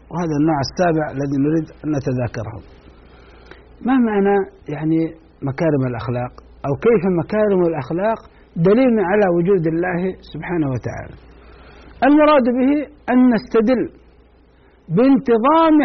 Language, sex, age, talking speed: Arabic, male, 60-79, 100 wpm